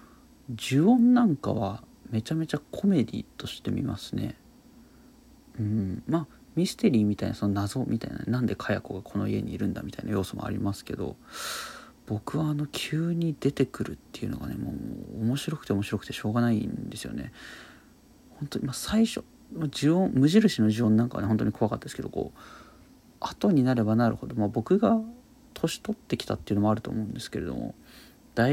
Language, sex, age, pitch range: Japanese, male, 40-59, 110-150 Hz